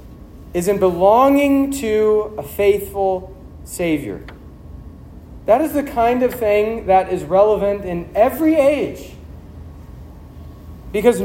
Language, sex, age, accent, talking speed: English, male, 30-49, American, 105 wpm